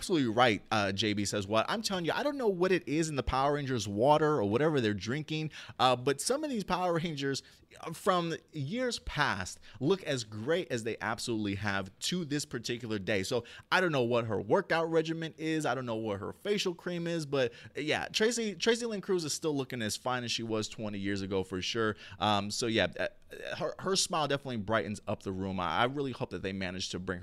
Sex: male